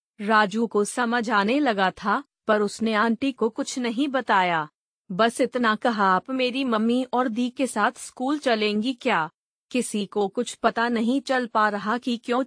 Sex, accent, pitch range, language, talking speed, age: female, native, 210-250 Hz, Hindi, 175 wpm, 30-49